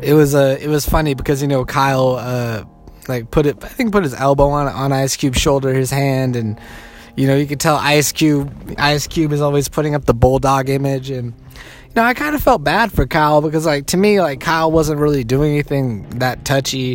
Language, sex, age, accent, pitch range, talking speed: English, male, 20-39, American, 135-160 Hz, 235 wpm